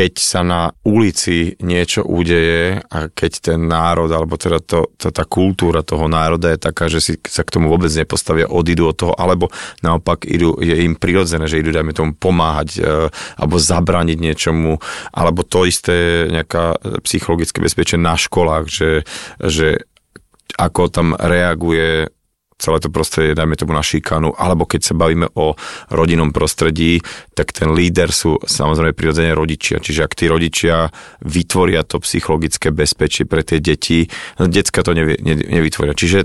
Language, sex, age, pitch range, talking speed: Slovak, male, 30-49, 80-90 Hz, 155 wpm